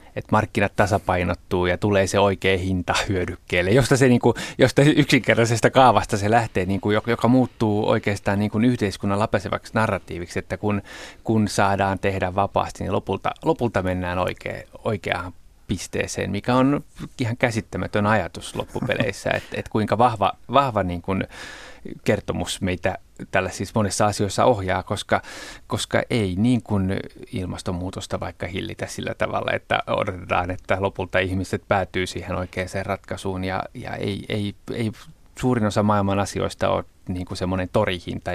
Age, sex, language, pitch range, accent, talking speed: 30-49, male, Finnish, 95-110 Hz, native, 145 wpm